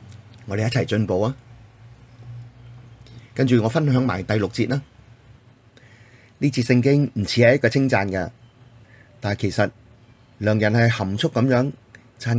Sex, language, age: male, Chinese, 30-49